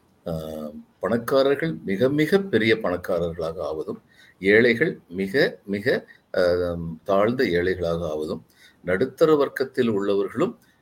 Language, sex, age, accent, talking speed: Tamil, male, 50-69, native, 85 wpm